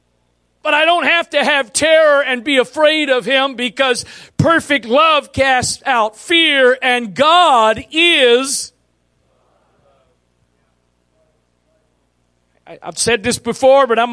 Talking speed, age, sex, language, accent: 115 wpm, 50-69, male, English, American